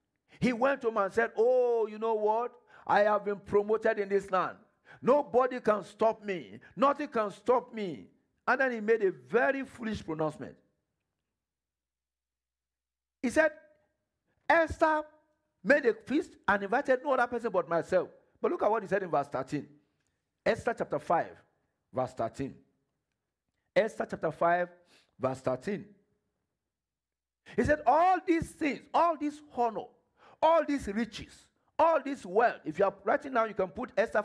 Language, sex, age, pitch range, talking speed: English, male, 50-69, 190-285 Hz, 155 wpm